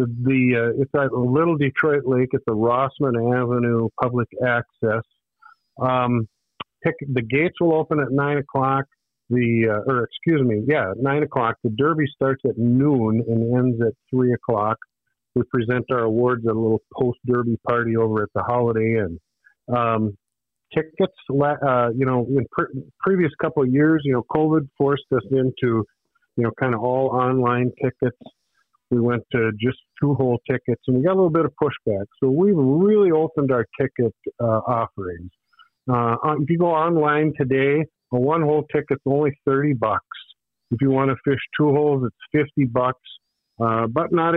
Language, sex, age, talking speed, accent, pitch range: English, male, 50-69, 170 wpm, American, 120-145 Hz